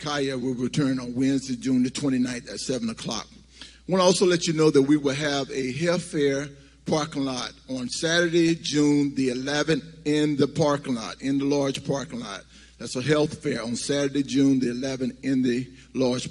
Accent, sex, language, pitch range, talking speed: American, male, English, 130-165 Hz, 195 wpm